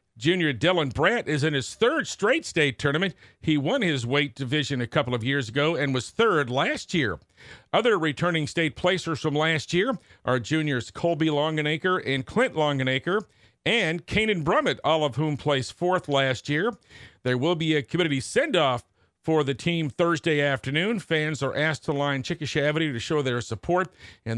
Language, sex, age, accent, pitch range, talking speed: English, male, 50-69, American, 135-175 Hz, 175 wpm